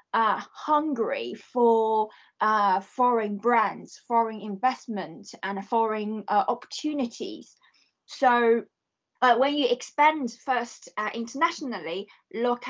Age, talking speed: 20-39, 105 wpm